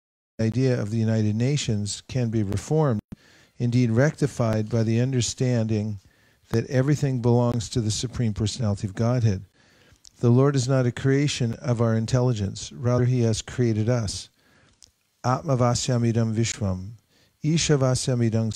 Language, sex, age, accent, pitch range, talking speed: English, male, 50-69, American, 110-130 Hz, 125 wpm